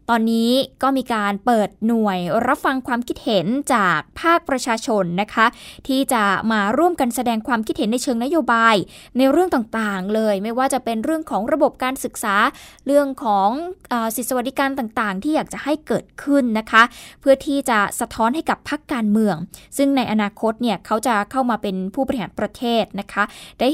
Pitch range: 205-270 Hz